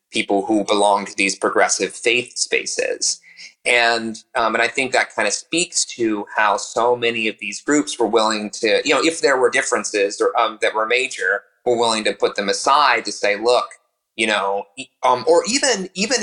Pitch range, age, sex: 105-145 Hz, 30-49, male